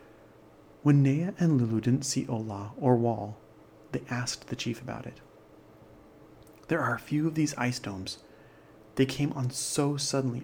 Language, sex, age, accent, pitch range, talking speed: English, male, 30-49, American, 110-135 Hz, 160 wpm